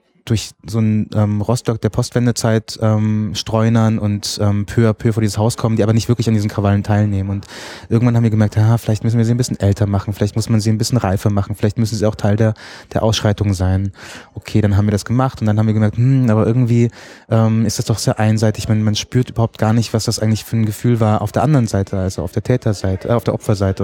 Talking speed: 255 wpm